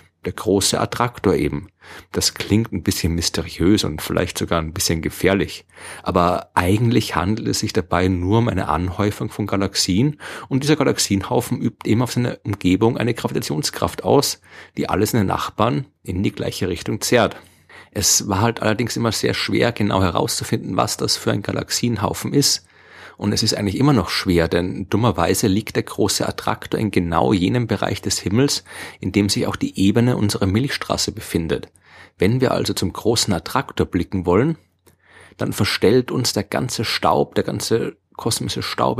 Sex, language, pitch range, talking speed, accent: male, German, 95-115 Hz, 170 wpm, German